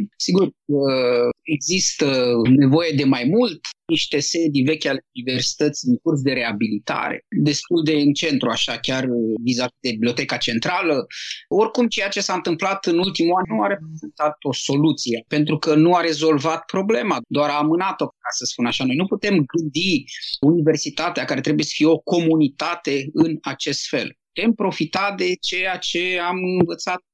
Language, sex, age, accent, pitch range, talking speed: Romanian, male, 30-49, native, 140-175 Hz, 160 wpm